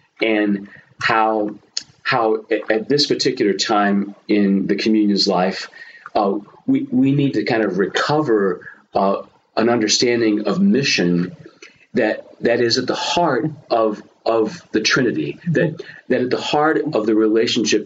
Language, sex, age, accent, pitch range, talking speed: English, male, 40-59, American, 95-120 Hz, 145 wpm